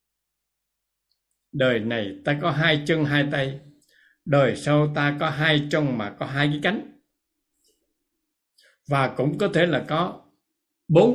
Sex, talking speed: male, 140 wpm